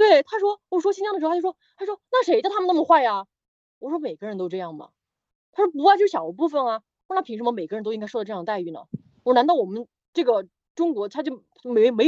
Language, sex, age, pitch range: Chinese, female, 20-39, 210-330 Hz